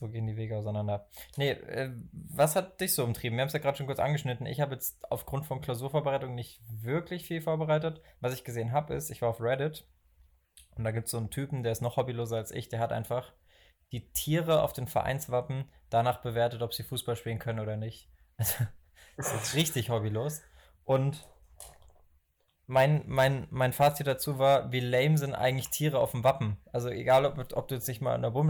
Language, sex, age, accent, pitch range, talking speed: German, male, 20-39, German, 115-145 Hz, 210 wpm